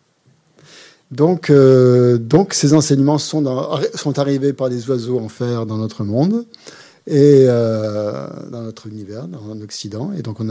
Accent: French